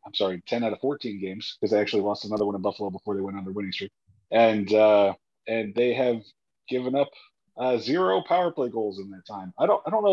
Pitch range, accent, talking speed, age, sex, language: 105-140 Hz, American, 250 wpm, 40-59, male, English